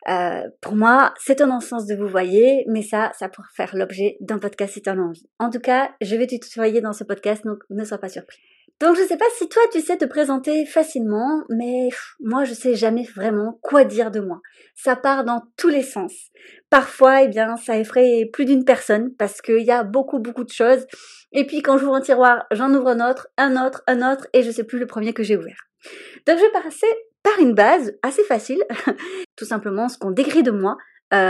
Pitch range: 220-305 Hz